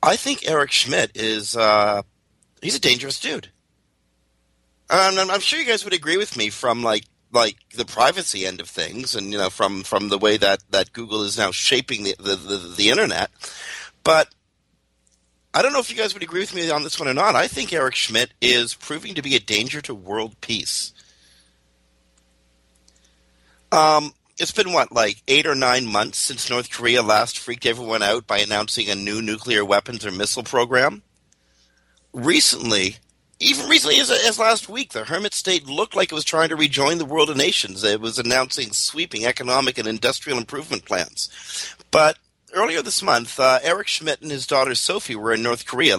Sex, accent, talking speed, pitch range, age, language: male, American, 185 wpm, 100-150 Hz, 50-69, English